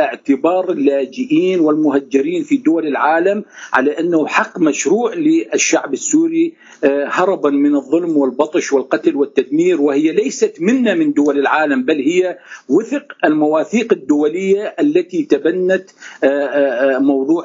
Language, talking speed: Arabic, 110 wpm